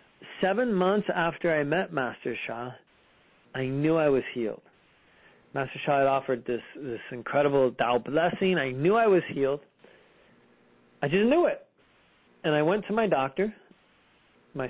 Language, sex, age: English, male, 40-59